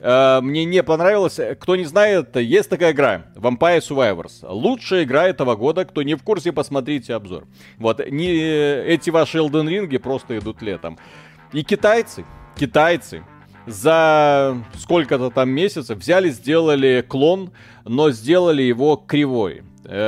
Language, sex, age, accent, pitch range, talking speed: Russian, male, 30-49, native, 115-160 Hz, 130 wpm